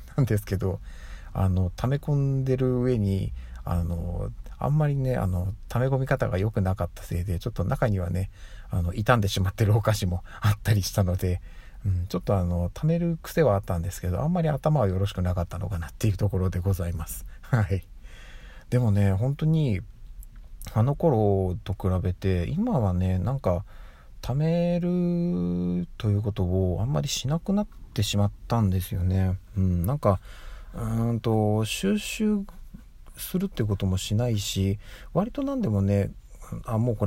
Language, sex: Japanese, male